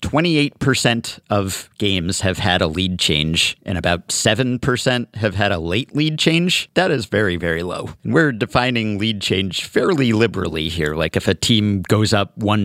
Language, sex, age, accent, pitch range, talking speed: English, male, 40-59, American, 95-130 Hz, 170 wpm